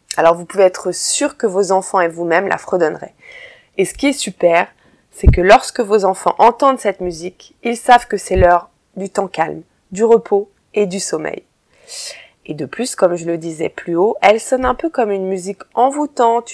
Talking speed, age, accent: 200 wpm, 20-39, French